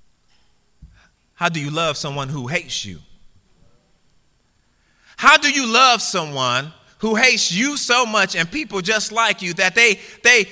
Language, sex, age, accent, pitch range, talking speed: English, male, 30-49, American, 145-240 Hz, 150 wpm